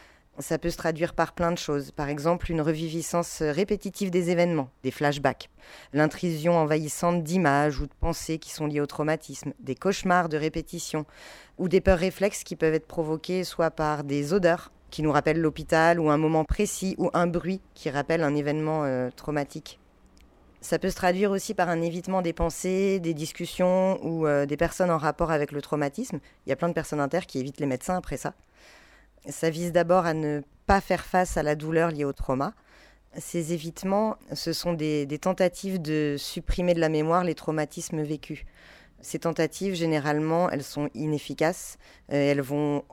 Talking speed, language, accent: 185 wpm, French, French